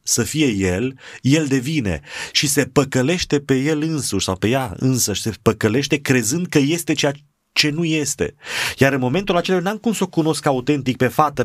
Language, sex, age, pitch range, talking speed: Romanian, male, 30-49, 90-135 Hz, 195 wpm